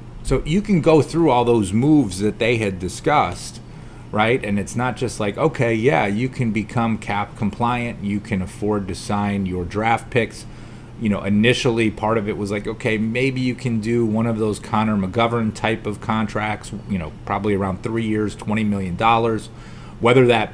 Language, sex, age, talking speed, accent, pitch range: English, male, 30-49, 185 wpm, American, 100-120 Hz